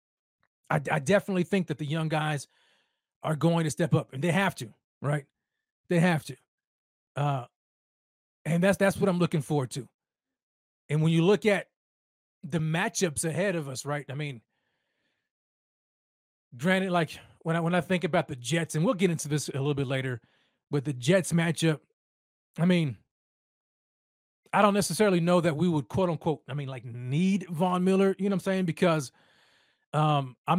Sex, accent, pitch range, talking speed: male, American, 135-170 Hz, 175 wpm